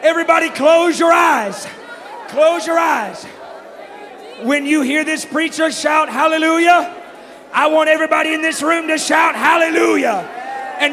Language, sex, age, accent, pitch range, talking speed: English, male, 40-59, American, 295-345 Hz, 130 wpm